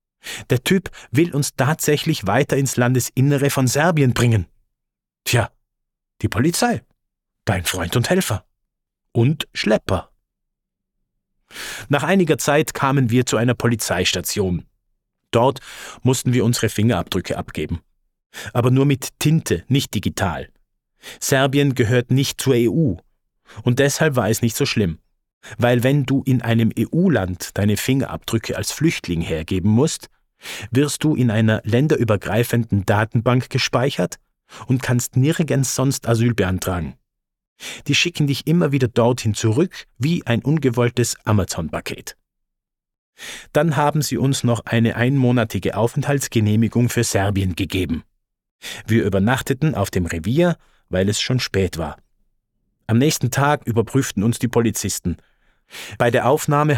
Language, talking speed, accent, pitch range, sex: English, 125 wpm, German, 105-140 Hz, male